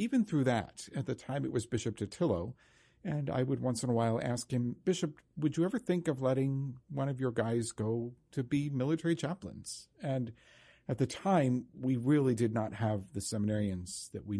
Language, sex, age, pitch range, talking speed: English, male, 50-69, 105-135 Hz, 200 wpm